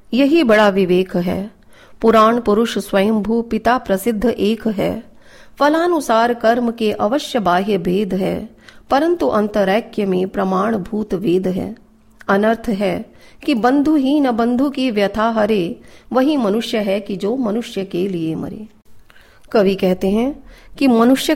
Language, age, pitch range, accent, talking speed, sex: Hindi, 40-59, 190-245 Hz, native, 140 wpm, female